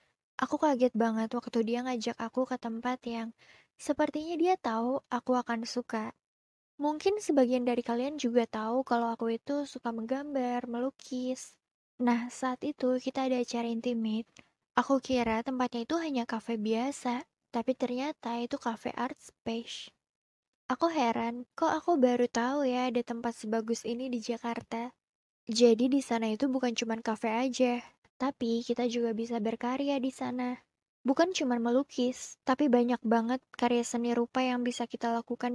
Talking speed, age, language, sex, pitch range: 150 wpm, 20-39, Indonesian, female, 235-260 Hz